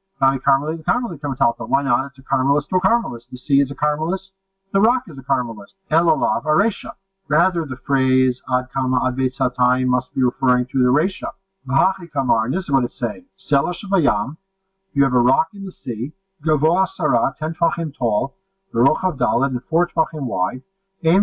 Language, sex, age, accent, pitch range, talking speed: English, male, 50-69, American, 125-160 Hz, 190 wpm